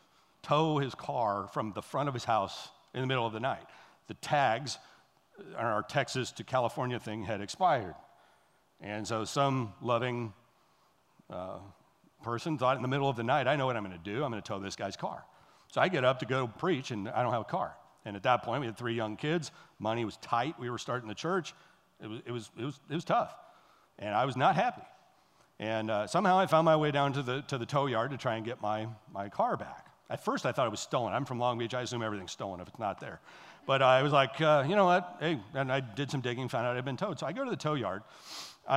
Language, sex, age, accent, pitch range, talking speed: English, male, 50-69, American, 115-150 Hz, 250 wpm